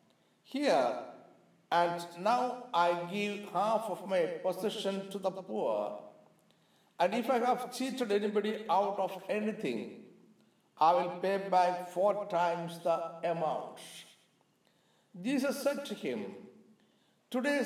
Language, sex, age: Malayalam, male, 50-69